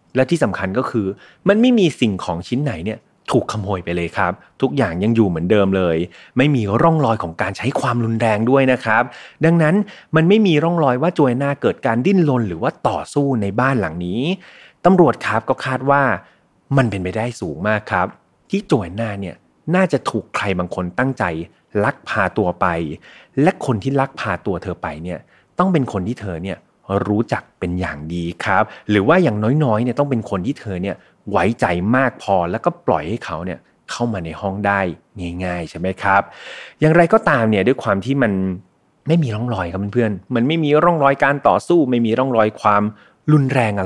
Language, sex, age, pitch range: Thai, male, 30-49, 95-140 Hz